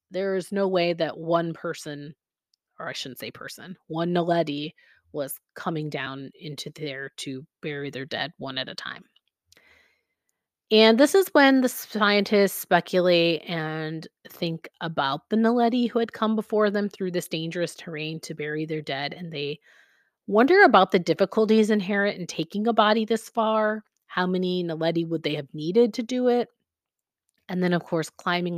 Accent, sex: American, female